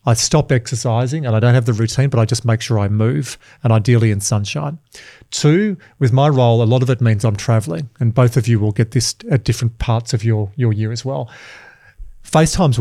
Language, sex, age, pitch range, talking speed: English, male, 40-59, 115-140 Hz, 225 wpm